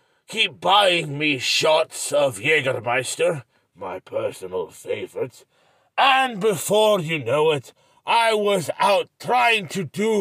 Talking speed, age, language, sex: 120 wpm, 40-59, English, male